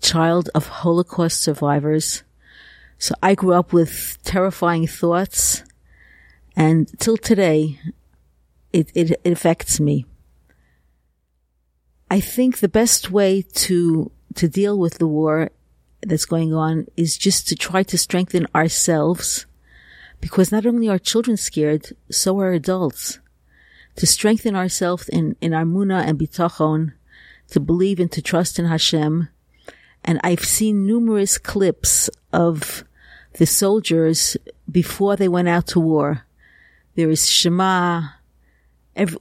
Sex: female